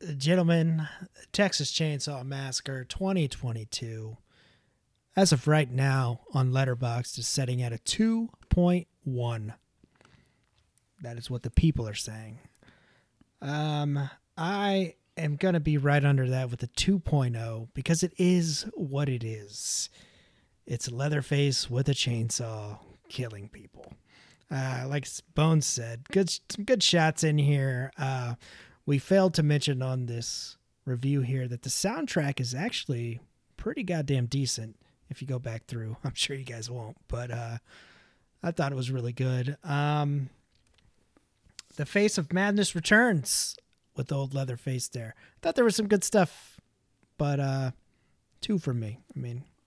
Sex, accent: male, American